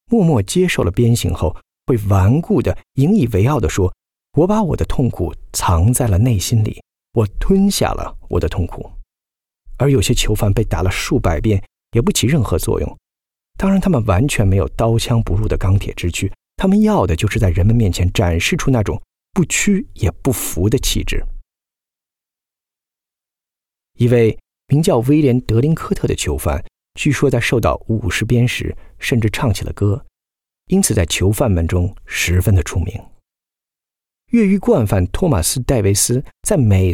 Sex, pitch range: male, 90-135 Hz